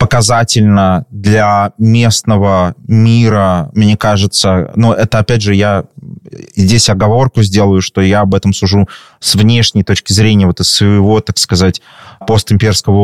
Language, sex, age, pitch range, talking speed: Russian, male, 20-39, 100-120 Hz, 135 wpm